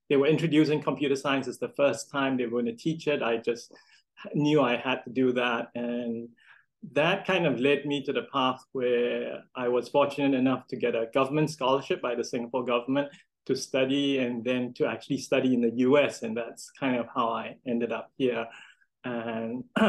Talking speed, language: 195 wpm, English